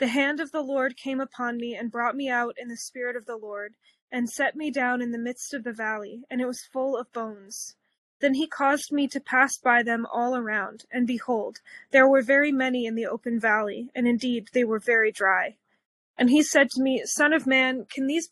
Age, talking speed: 20-39, 230 wpm